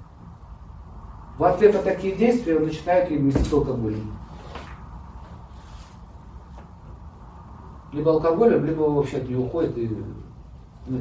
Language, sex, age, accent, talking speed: Russian, male, 40-59, native, 105 wpm